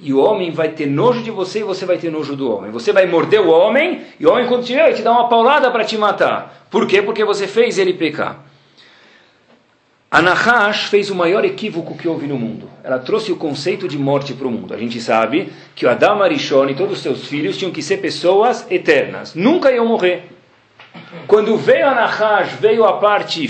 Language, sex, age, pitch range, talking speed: Portuguese, male, 40-59, 165-235 Hz, 220 wpm